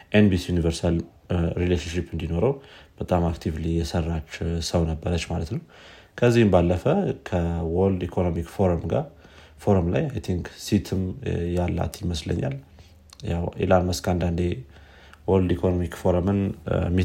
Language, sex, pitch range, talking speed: Amharic, male, 85-95 Hz, 115 wpm